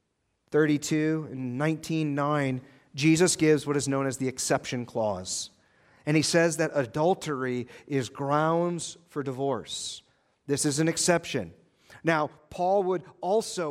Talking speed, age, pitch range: 125 wpm, 40-59, 140-170 Hz